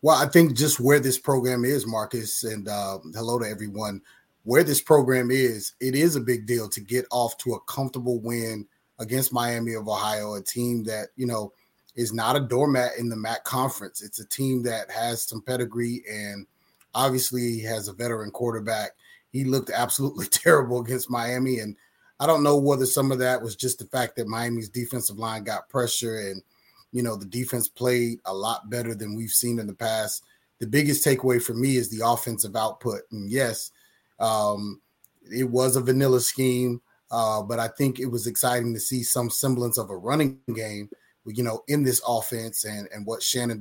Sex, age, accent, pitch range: male, 30-49, American, 110-130 Hz